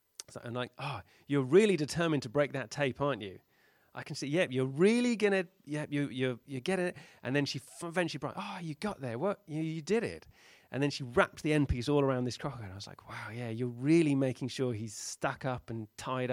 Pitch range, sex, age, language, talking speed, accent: 110-145 Hz, male, 30-49, English, 250 wpm, British